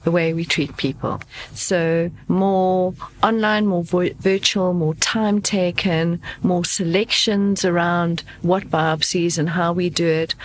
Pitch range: 170-200 Hz